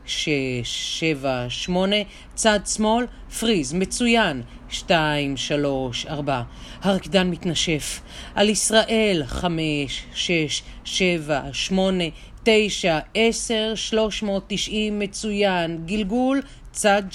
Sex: female